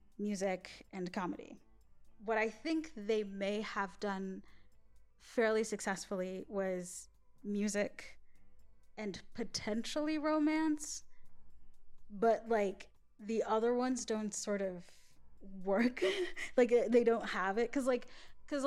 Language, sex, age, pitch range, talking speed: English, female, 10-29, 195-235 Hz, 110 wpm